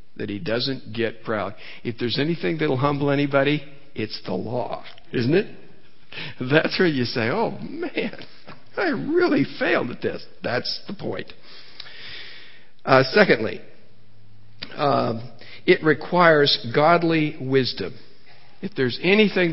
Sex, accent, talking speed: male, American, 125 wpm